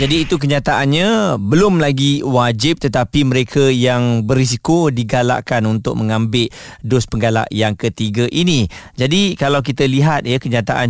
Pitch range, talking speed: 115-140 Hz, 130 wpm